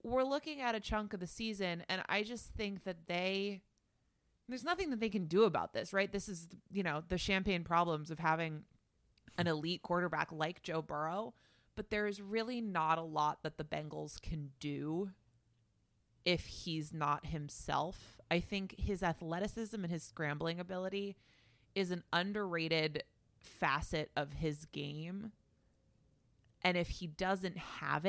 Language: English